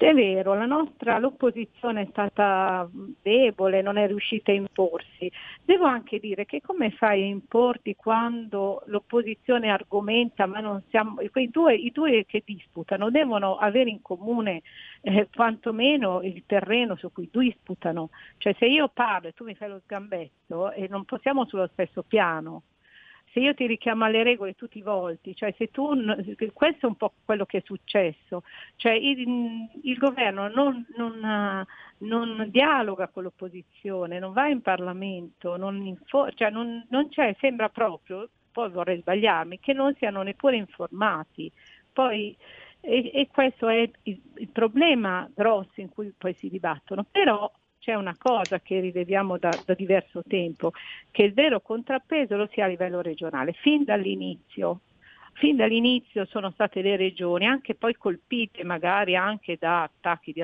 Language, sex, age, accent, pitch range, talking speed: Italian, female, 50-69, native, 190-235 Hz, 160 wpm